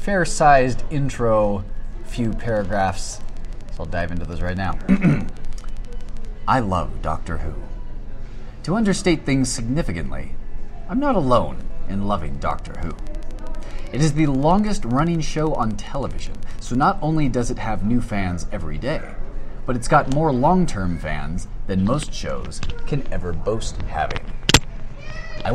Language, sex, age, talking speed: English, male, 30-49, 135 wpm